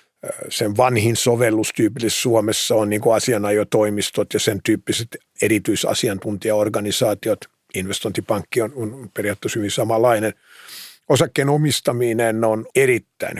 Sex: male